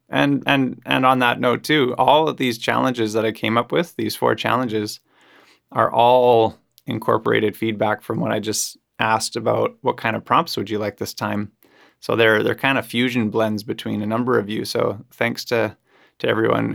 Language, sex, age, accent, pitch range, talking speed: English, male, 20-39, American, 110-120 Hz, 195 wpm